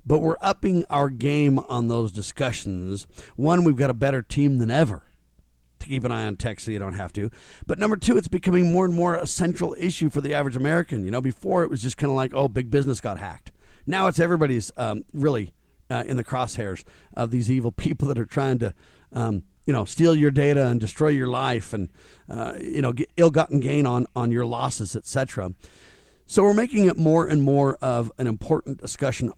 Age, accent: 50-69, American